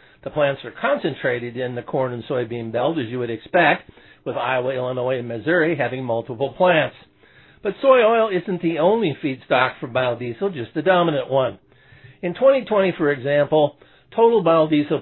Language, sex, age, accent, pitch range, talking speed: English, male, 50-69, American, 130-165 Hz, 165 wpm